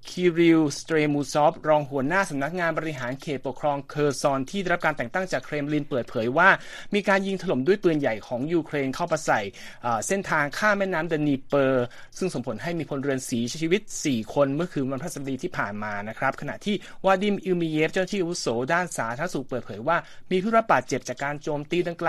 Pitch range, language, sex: 135-180 Hz, Thai, male